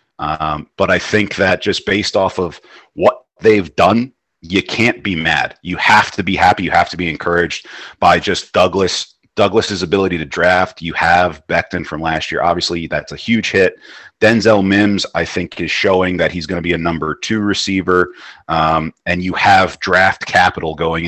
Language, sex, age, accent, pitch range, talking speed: English, male, 40-59, American, 80-95 Hz, 190 wpm